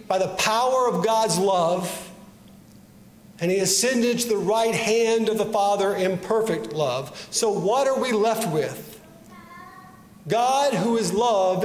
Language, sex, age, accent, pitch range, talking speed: English, male, 50-69, American, 175-215 Hz, 150 wpm